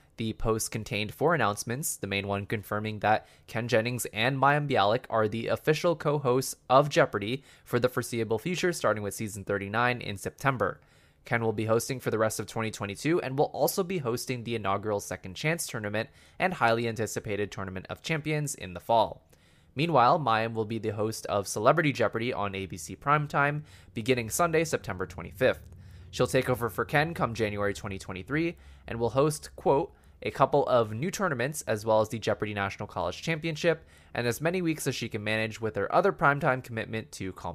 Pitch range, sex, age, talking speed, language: 105-145 Hz, male, 20-39, 185 wpm, English